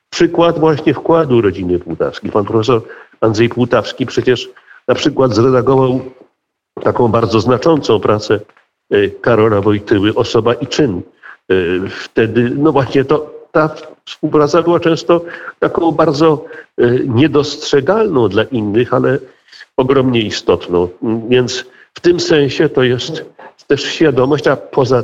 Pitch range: 120-155 Hz